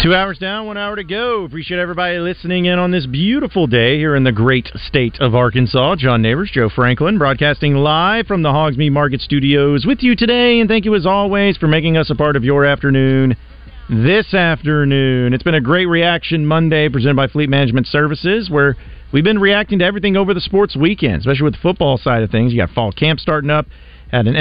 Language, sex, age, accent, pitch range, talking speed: English, male, 40-59, American, 120-180 Hz, 215 wpm